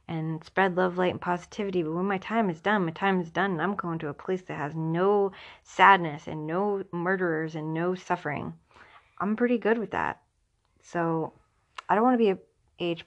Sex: female